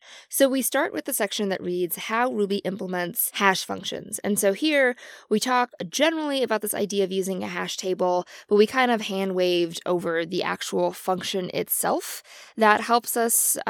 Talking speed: 180 wpm